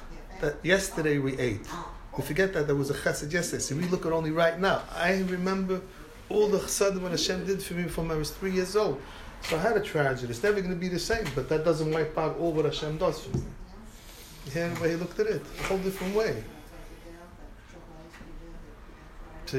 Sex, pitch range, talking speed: male, 125-170 Hz, 215 wpm